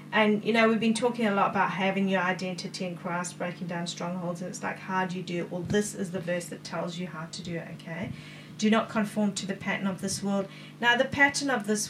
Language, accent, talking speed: English, Australian, 260 wpm